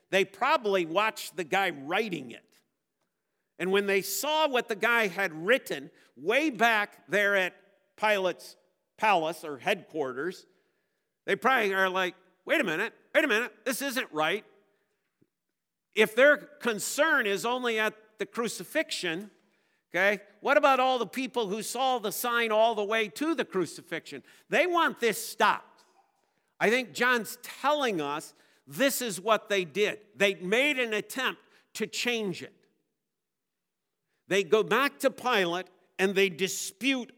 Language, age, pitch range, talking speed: English, 50-69, 195-235 Hz, 145 wpm